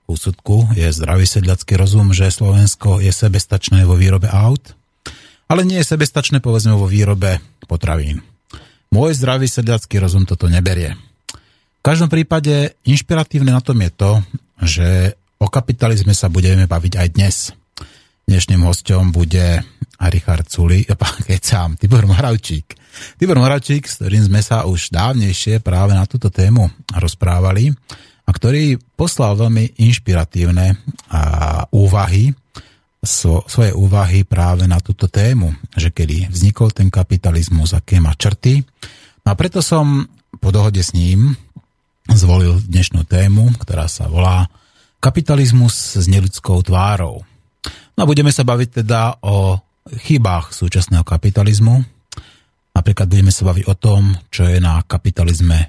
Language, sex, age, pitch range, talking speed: Slovak, male, 30-49, 90-120 Hz, 130 wpm